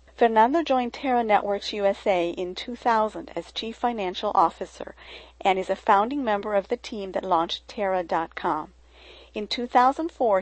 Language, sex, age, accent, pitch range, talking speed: English, female, 40-59, American, 190-235 Hz, 140 wpm